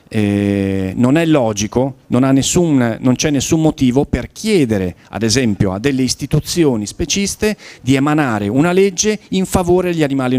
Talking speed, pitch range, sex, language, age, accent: 145 wpm, 105-150 Hz, male, Italian, 40-59, native